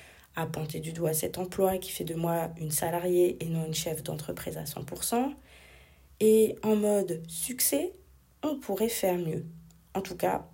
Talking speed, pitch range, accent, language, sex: 170 wpm, 165-195 Hz, French, French, female